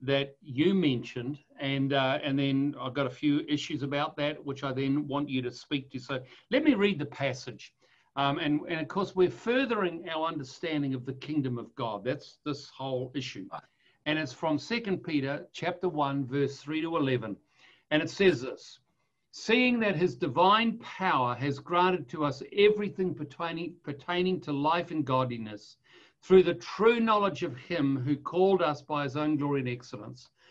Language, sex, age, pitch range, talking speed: English, male, 60-79, 140-190 Hz, 180 wpm